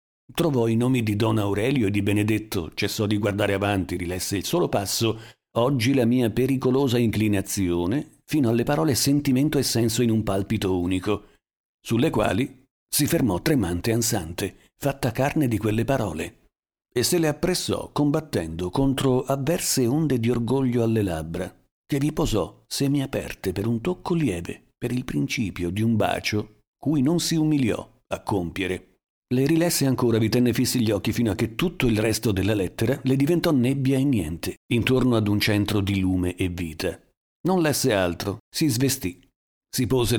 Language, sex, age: Italian, male, 50-69